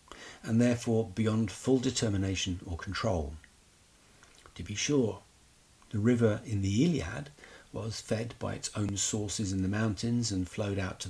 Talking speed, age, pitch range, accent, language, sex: 150 wpm, 50-69, 95-120 Hz, British, English, male